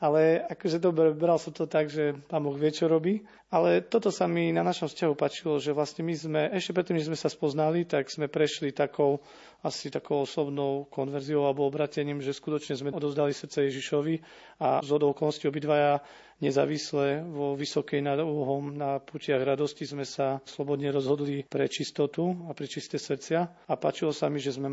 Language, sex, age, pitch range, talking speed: Slovak, male, 40-59, 140-150 Hz, 180 wpm